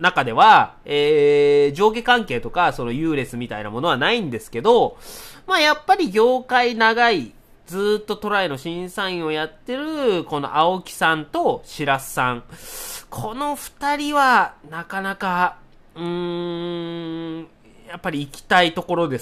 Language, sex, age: Japanese, male, 30-49